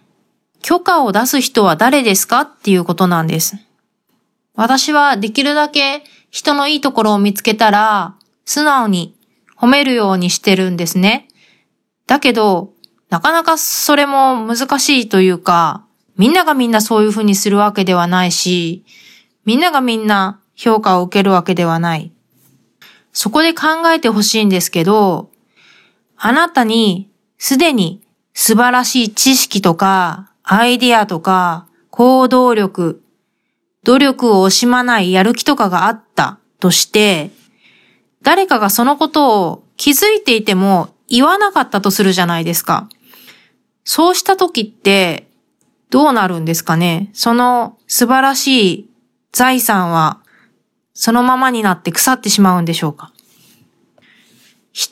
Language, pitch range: Japanese, 190-260 Hz